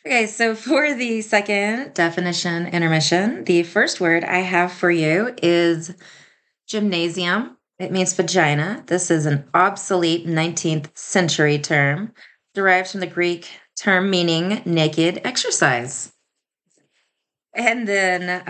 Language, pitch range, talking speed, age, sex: English, 175-220 Hz, 115 wpm, 20-39, female